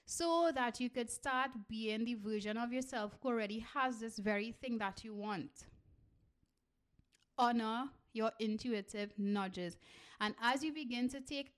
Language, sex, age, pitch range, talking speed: English, female, 30-49, 210-260 Hz, 150 wpm